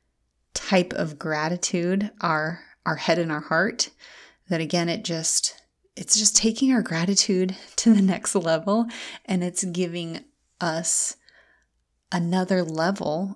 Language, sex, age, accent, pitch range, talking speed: English, female, 30-49, American, 165-210 Hz, 125 wpm